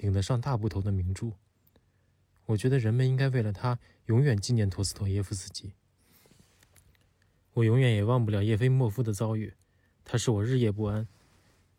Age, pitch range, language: 20-39, 100-120 Hz, Chinese